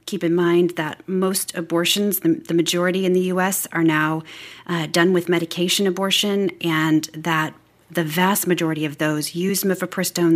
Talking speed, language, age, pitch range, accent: 160 wpm, English, 40-59, 170-205 Hz, American